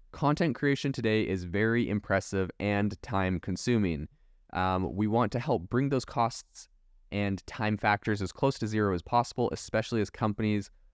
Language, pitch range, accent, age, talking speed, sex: English, 95-115 Hz, American, 20-39, 160 wpm, male